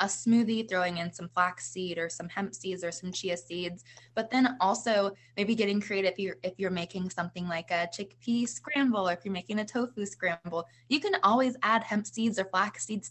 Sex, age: female, 20-39